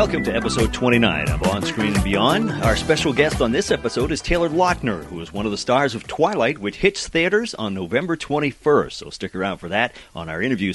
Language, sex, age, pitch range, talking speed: English, male, 40-59, 100-135 Hz, 225 wpm